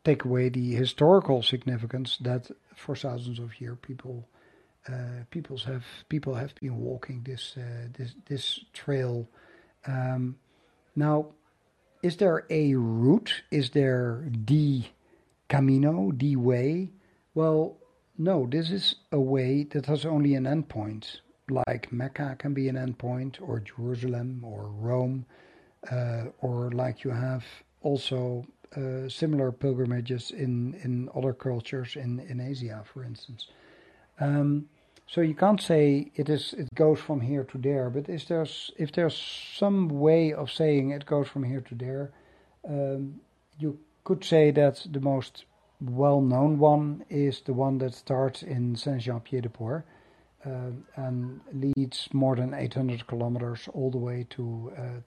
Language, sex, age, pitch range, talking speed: English, male, 60-79, 125-145 Hz, 145 wpm